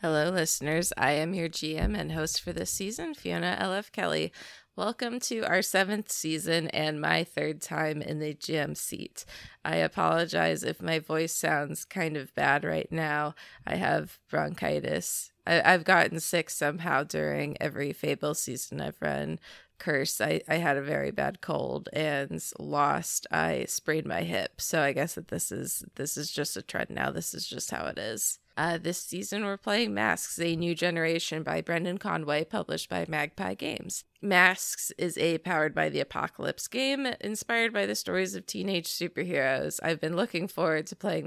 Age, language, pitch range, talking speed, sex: 20-39, English, 150-190 Hz, 175 wpm, female